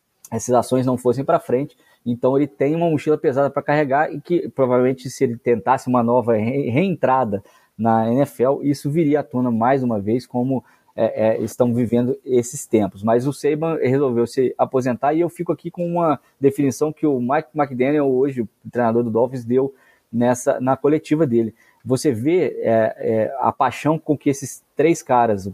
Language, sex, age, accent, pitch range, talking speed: Portuguese, male, 20-39, Brazilian, 120-140 Hz, 185 wpm